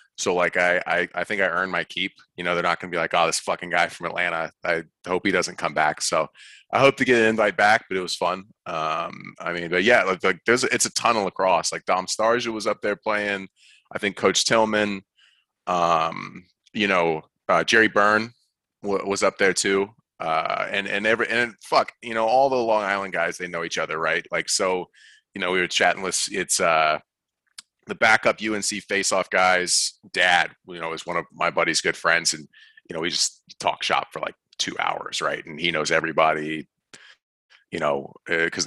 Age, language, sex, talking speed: 30-49, English, male, 215 wpm